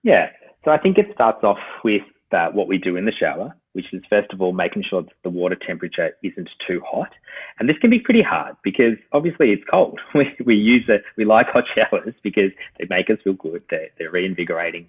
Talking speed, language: 225 wpm, English